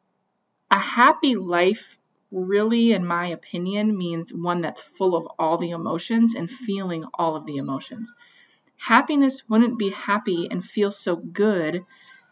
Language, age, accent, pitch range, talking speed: English, 30-49, American, 170-230 Hz, 140 wpm